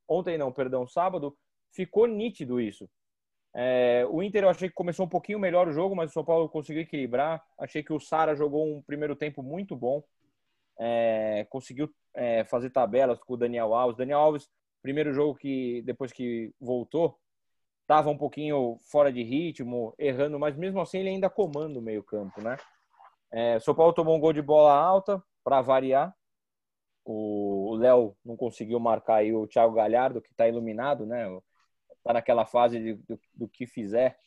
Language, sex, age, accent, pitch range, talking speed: Portuguese, male, 20-39, Brazilian, 120-165 Hz, 175 wpm